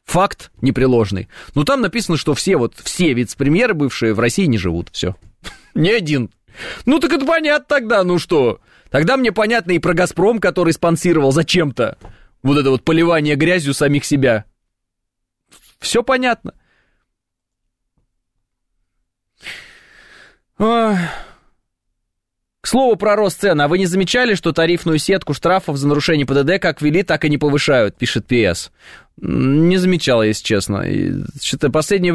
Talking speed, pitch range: 135 wpm, 125-185 Hz